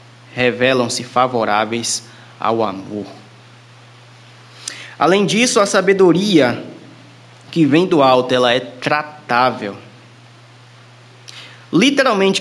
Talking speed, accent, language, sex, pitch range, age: 75 wpm, Brazilian, Portuguese, male, 125-205 Hz, 20-39